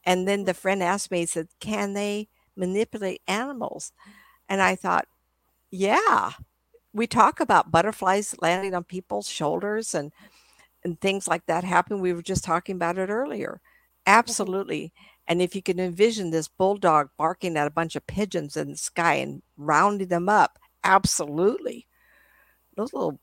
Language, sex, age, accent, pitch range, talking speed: English, female, 60-79, American, 155-195 Hz, 160 wpm